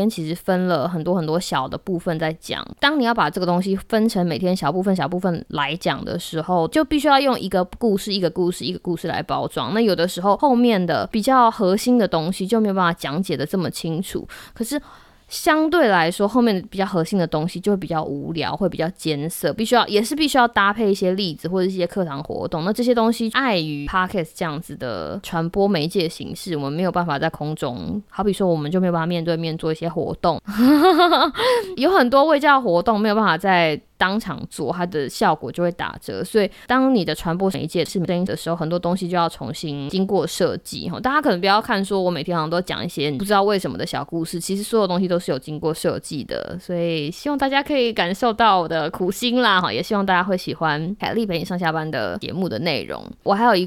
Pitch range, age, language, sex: 165-215 Hz, 20-39, Chinese, female